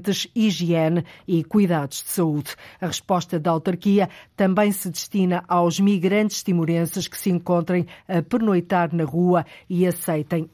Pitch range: 175-205 Hz